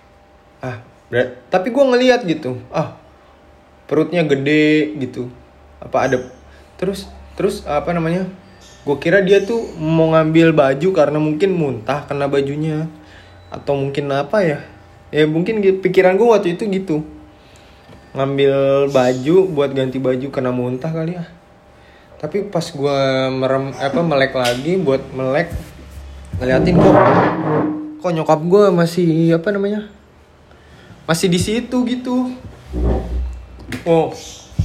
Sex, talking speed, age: male, 120 wpm, 20-39